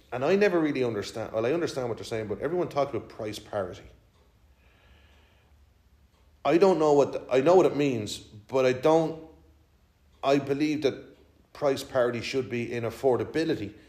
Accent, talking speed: Irish, 165 wpm